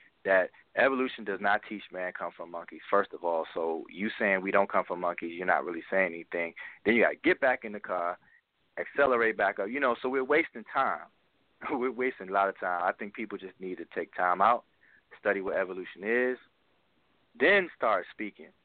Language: English